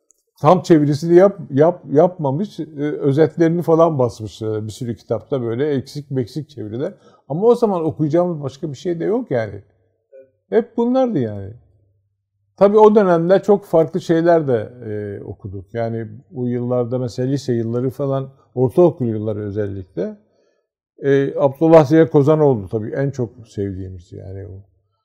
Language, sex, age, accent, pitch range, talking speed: Turkish, male, 50-69, native, 110-170 Hz, 140 wpm